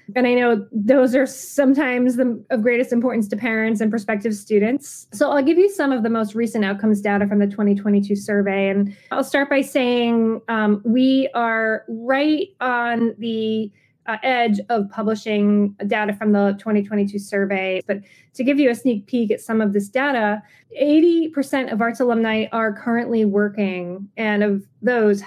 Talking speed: 170 wpm